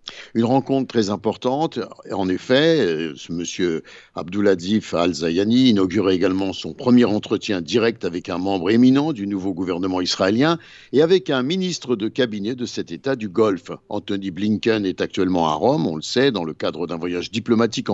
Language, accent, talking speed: Italian, French, 165 wpm